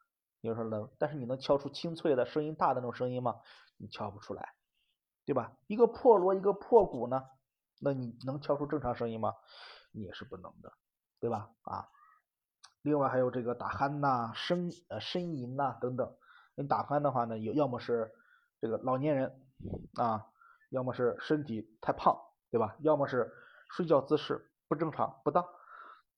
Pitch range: 120-165 Hz